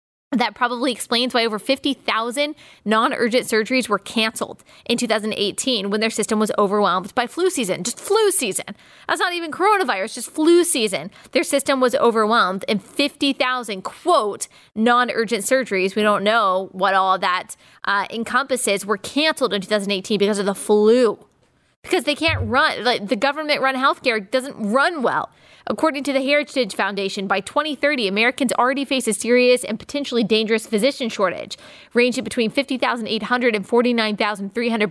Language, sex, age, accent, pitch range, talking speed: English, female, 20-39, American, 210-255 Hz, 150 wpm